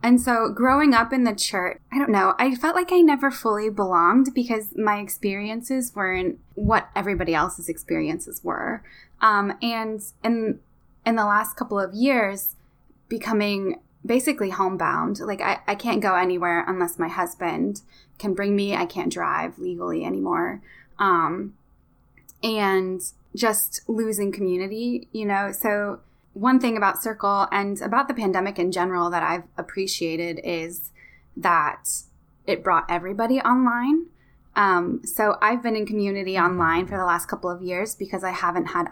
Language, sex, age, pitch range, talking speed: English, female, 10-29, 185-230 Hz, 155 wpm